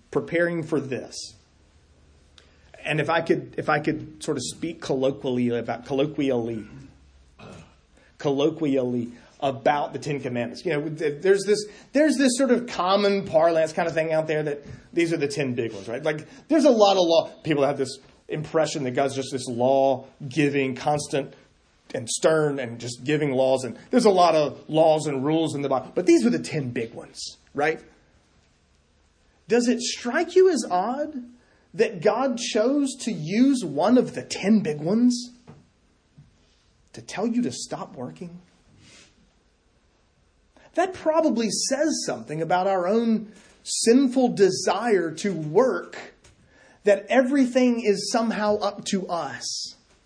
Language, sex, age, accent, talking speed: English, male, 30-49, American, 150 wpm